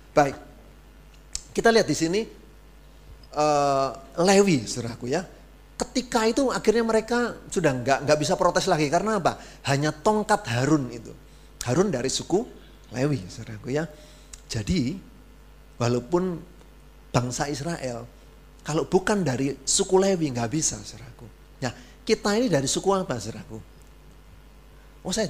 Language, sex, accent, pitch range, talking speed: Indonesian, male, native, 125-185 Hz, 125 wpm